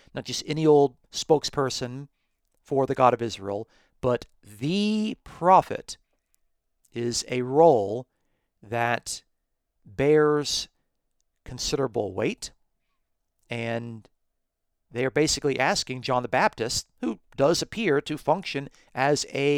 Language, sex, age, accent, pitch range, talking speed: English, male, 40-59, American, 110-145 Hz, 105 wpm